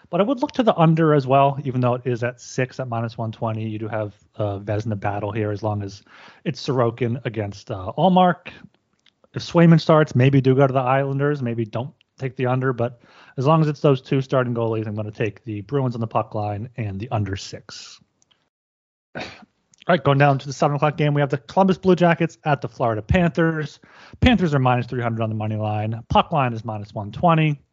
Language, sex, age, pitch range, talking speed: English, male, 30-49, 115-150 Hz, 225 wpm